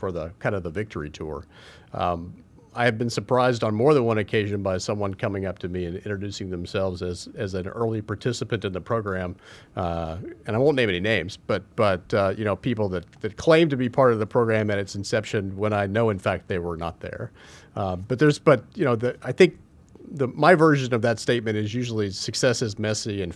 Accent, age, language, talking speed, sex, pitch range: American, 40-59, English, 230 wpm, male, 100-130 Hz